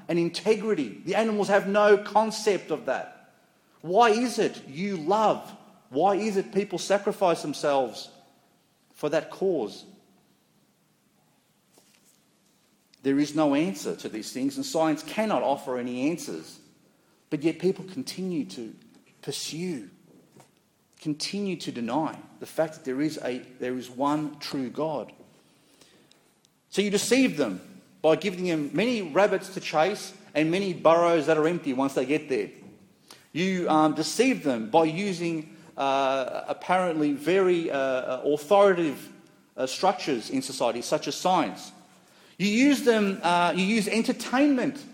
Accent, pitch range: Australian, 155-215 Hz